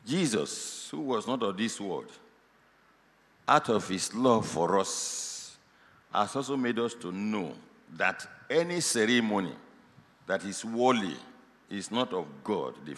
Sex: male